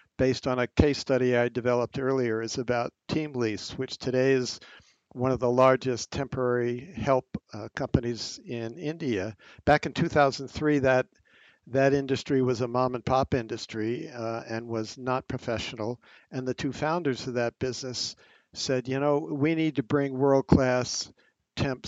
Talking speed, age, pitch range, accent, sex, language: 160 wpm, 60-79, 115-135 Hz, American, male, English